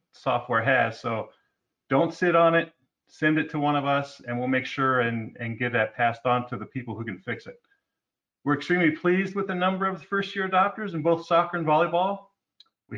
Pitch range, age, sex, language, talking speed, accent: 130-170 Hz, 40-59, male, English, 210 wpm, American